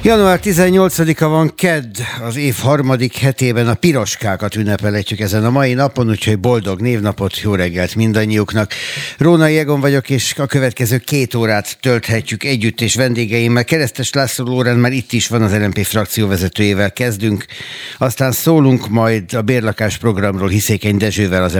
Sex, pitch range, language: male, 100-125 Hz, Hungarian